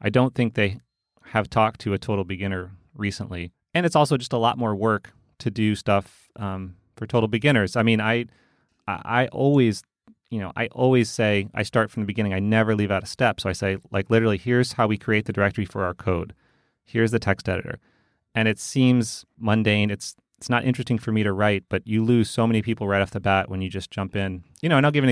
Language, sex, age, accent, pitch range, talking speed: English, male, 30-49, American, 105-125 Hz, 235 wpm